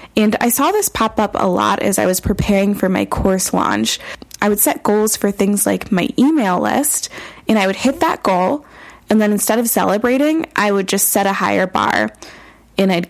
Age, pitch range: 20-39, 195-250 Hz